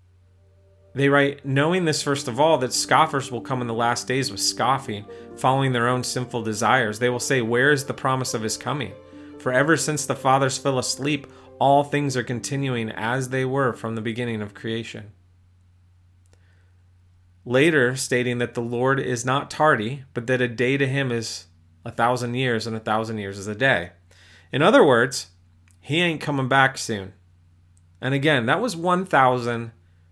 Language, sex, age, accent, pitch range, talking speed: English, male, 30-49, American, 95-140 Hz, 175 wpm